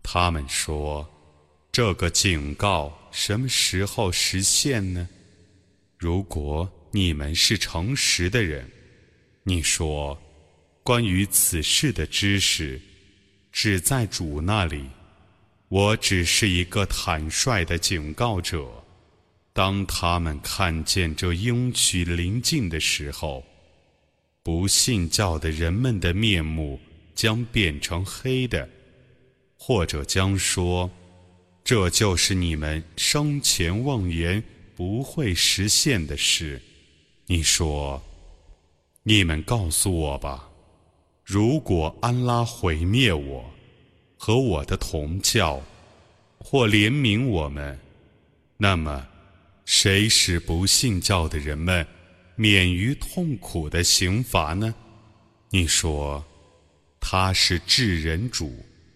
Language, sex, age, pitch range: Arabic, male, 30-49, 80-105 Hz